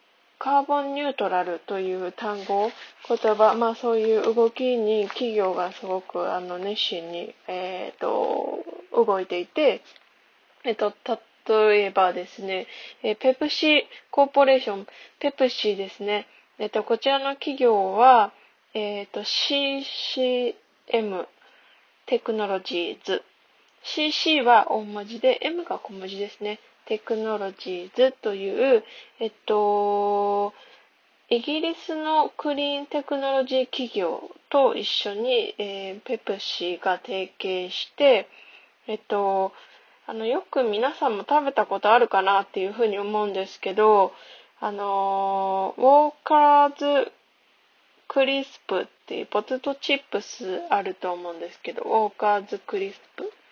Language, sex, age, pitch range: Japanese, female, 20-39, 200-285 Hz